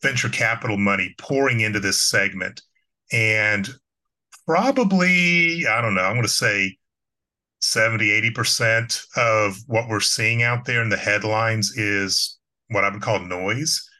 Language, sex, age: English, male, 30-49